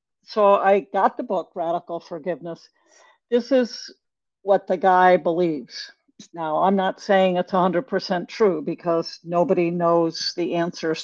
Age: 60-79